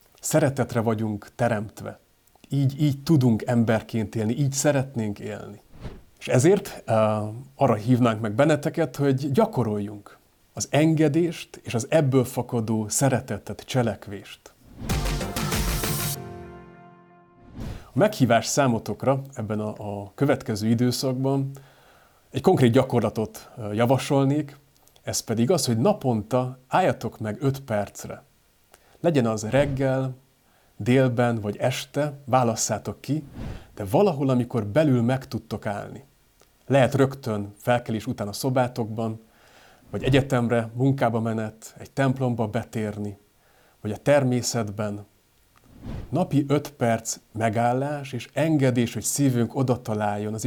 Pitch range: 110-135 Hz